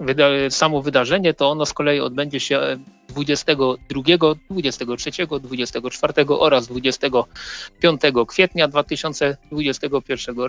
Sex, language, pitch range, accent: male, Polish, 130-155 Hz, native